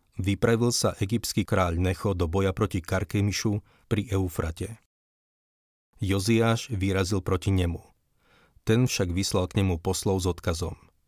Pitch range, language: 90-105 Hz, Slovak